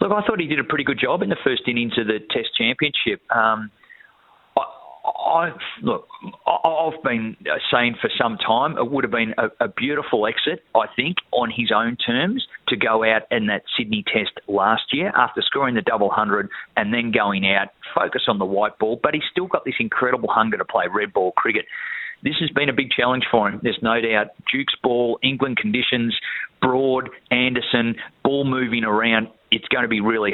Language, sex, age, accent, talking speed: English, male, 30-49, Australian, 195 wpm